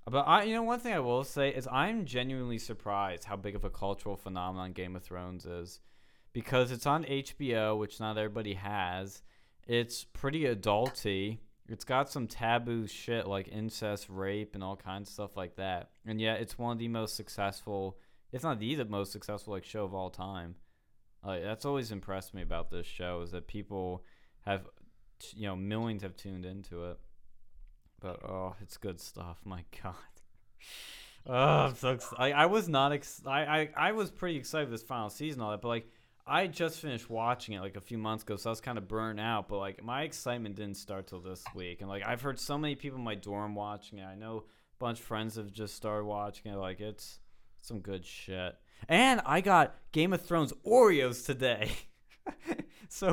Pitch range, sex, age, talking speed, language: 95-125 Hz, male, 20-39, 205 wpm, English